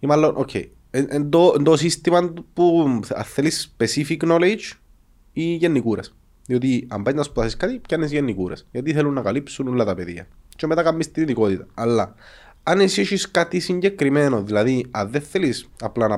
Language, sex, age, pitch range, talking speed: Greek, male, 30-49, 105-150 Hz, 150 wpm